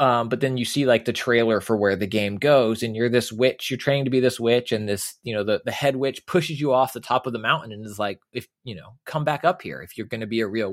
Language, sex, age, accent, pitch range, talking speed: English, male, 20-39, American, 110-140 Hz, 315 wpm